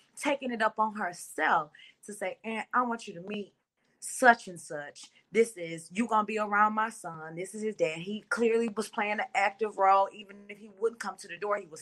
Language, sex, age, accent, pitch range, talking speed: English, female, 20-39, American, 195-245 Hz, 230 wpm